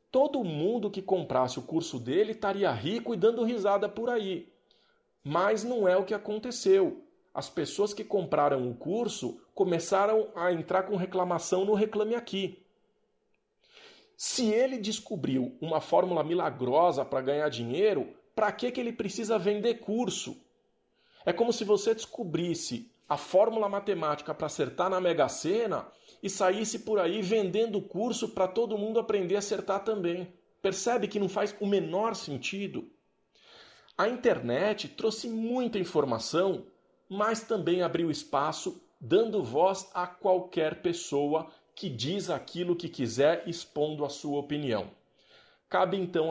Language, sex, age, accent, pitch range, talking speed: Portuguese, male, 40-59, Brazilian, 170-220 Hz, 140 wpm